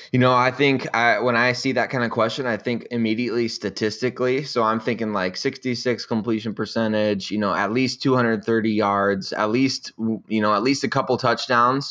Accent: American